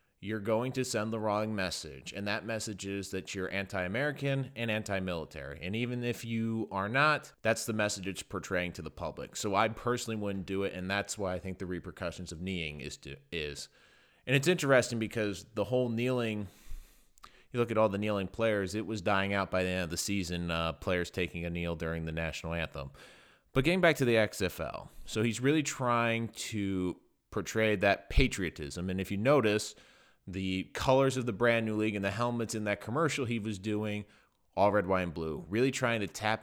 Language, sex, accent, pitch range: English, male, American, 95-115 Hz